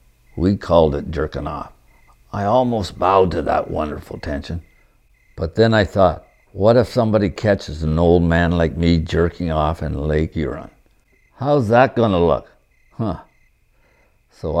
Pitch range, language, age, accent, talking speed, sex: 80-115 Hz, English, 60-79, American, 150 wpm, male